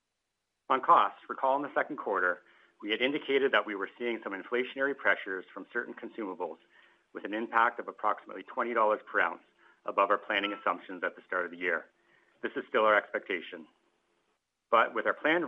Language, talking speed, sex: English, 180 wpm, male